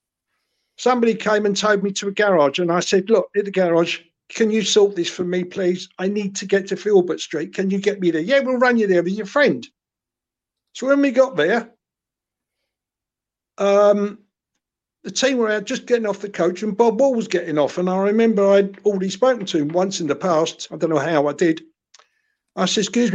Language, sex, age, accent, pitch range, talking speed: English, male, 50-69, British, 175-215 Hz, 220 wpm